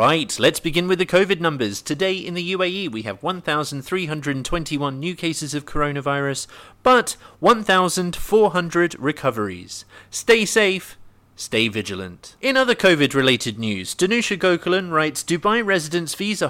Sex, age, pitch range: male, 30-49, 140-185 Hz